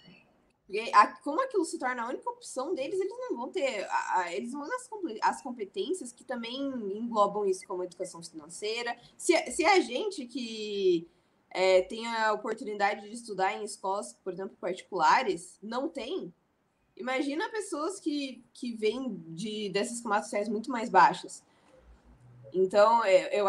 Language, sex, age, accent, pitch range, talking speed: Portuguese, female, 20-39, Brazilian, 200-330 Hz, 145 wpm